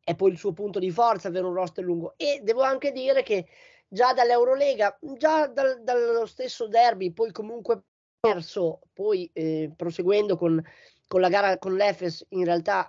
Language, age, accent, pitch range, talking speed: Italian, 20-39, native, 180-235 Hz, 170 wpm